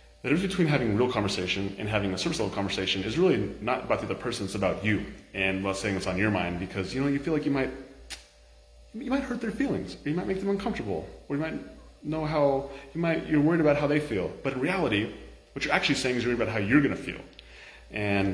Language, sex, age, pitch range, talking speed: English, male, 30-49, 95-135 Hz, 260 wpm